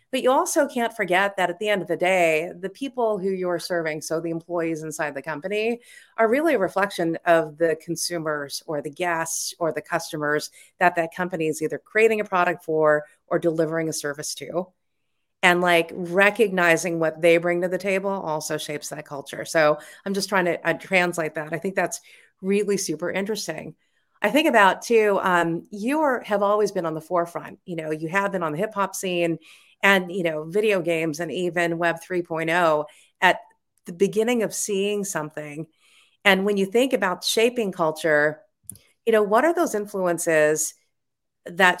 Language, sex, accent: English, female, American